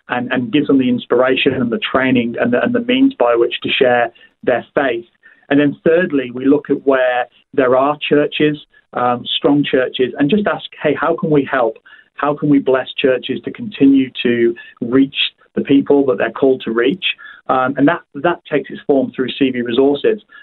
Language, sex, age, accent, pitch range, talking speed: English, male, 40-59, British, 125-145 Hz, 195 wpm